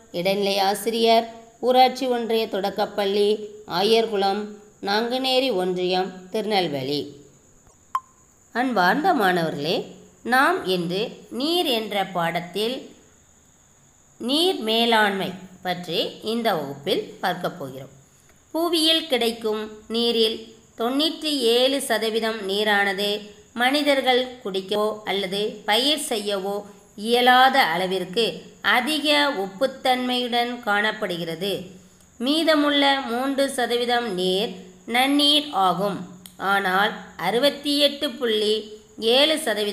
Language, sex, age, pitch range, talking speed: Tamil, female, 20-39, 195-255 Hz, 65 wpm